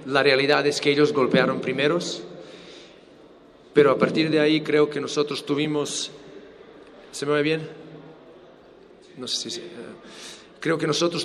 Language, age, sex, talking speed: Spanish, 40-59, male, 140 wpm